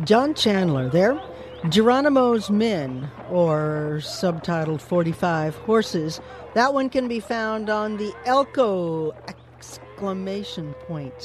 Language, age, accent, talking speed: German, 50-69, American, 100 wpm